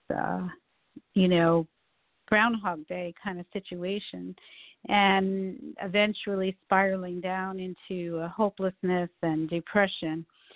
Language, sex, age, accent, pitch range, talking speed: English, female, 50-69, American, 185-220 Hz, 95 wpm